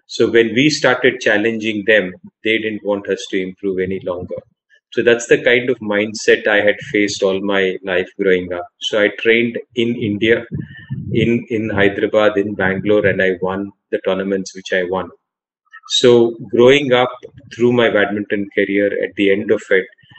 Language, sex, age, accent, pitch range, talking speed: Hindi, male, 30-49, native, 100-115 Hz, 170 wpm